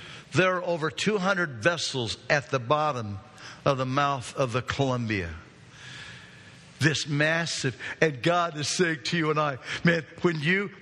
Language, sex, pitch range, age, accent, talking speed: English, male, 125-175 Hz, 50-69, American, 150 wpm